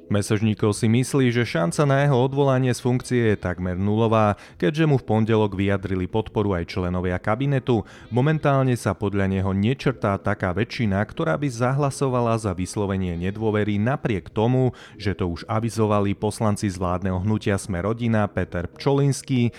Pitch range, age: 100-125 Hz, 30-49